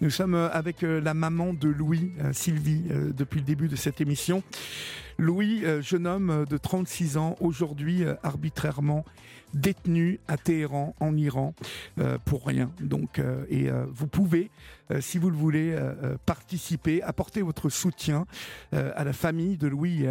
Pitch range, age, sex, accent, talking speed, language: 145-175 Hz, 50-69, male, French, 140 wpm, French